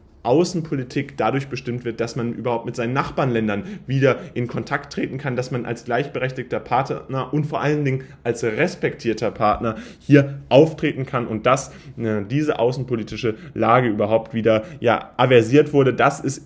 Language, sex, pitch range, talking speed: German, male, 115-150 Hz, 150 wpm